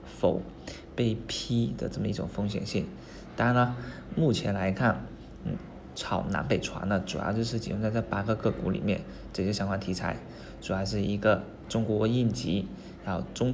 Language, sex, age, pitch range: Chinese, male, 20-39, 95-115 Hz